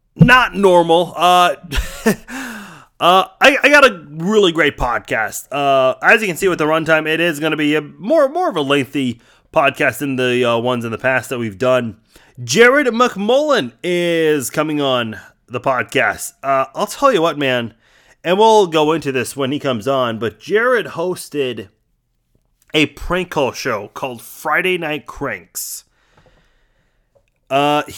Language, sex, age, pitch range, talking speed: English, male, 30-49, 130-185 Hz, 160 wpm